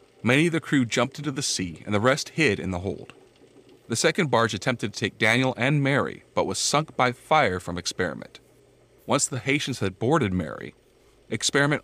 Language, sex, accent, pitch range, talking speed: English, male, American, 105-145 Hz, 195 wpm